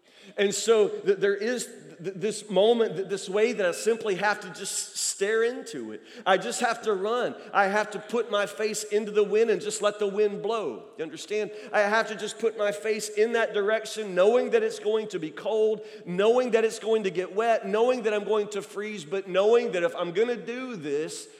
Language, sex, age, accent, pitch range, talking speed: English, male, 40-59, American, 200-240 Hz, 220 wpm